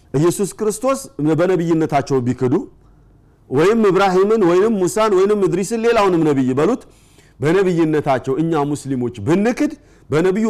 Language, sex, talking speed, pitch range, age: Amharic, male, 110 wpm, 155-190 Hz, 50-69